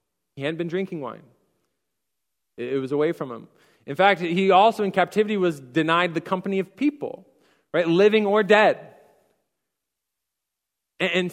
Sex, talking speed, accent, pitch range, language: male, 145 wpm, American, 135-190 Hz, English